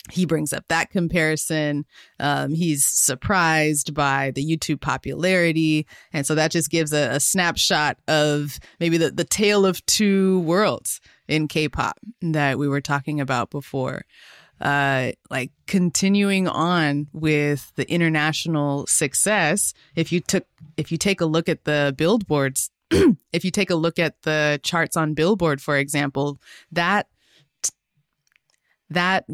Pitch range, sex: 145-170 Hz, female